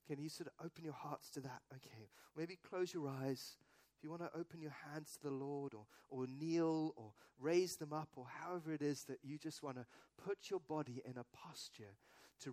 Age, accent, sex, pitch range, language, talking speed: 40-59, British, male, 140-200 Hz, English, 225 wpm